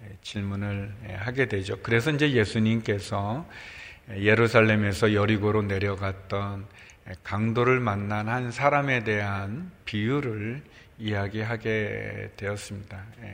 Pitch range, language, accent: 100-115 Hz, Korean, native